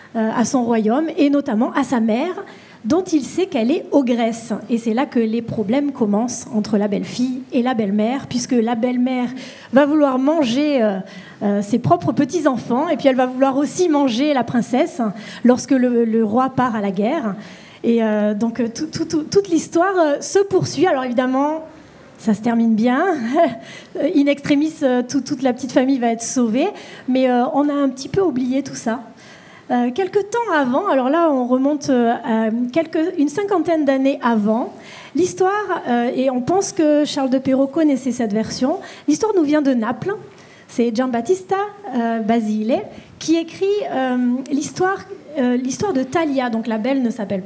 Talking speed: 180 wpm